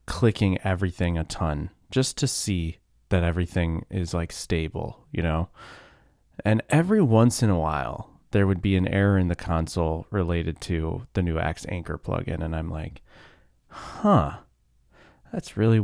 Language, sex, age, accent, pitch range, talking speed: English, male, 20-39, American, 85-110 Hz, 155 wpm